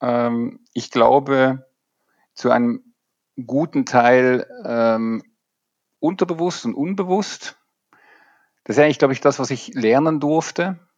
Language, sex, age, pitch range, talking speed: German, male, 50-69, 100-130 Hz, 110 wpm